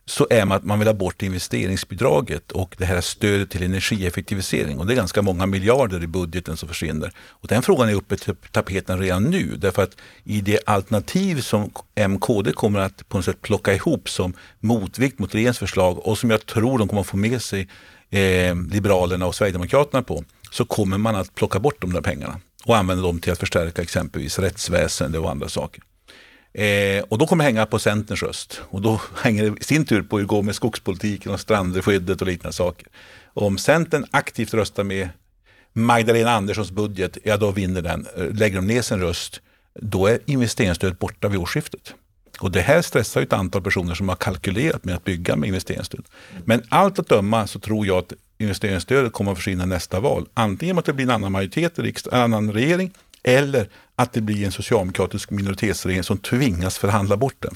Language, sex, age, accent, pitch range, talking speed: Swedish, male, 50-69, native, 95-115 Hz, 195 wpm